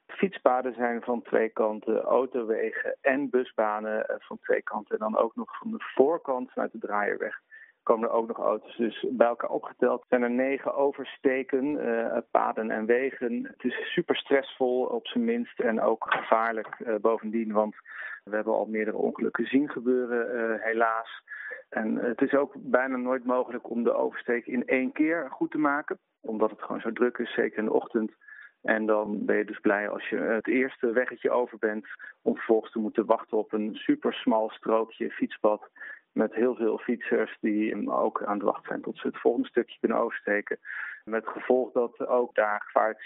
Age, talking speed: 40-59, 185 wpm